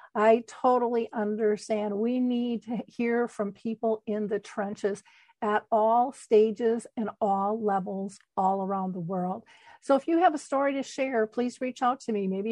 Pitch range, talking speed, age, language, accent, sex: 215-250 Hz, 175 wpm, 50-69, English, American, female